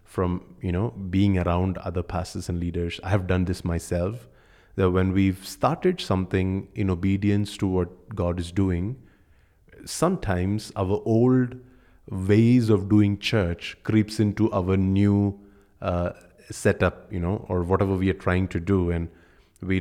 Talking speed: 150 wpm